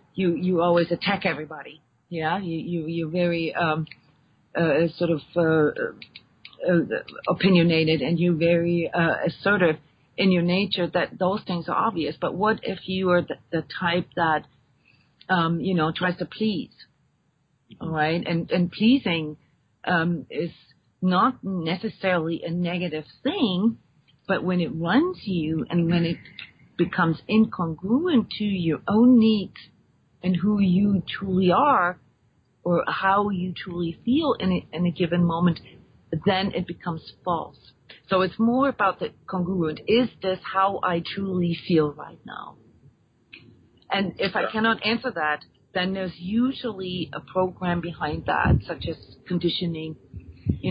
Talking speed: 145 wpm